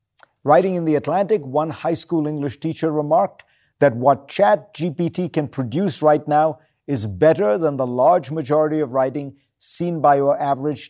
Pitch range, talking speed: 135-170 Hz, 165 wpm